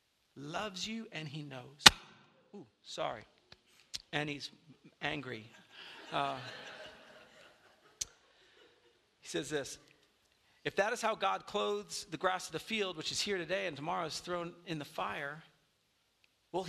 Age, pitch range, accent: 40-59, 155-205 Hz, American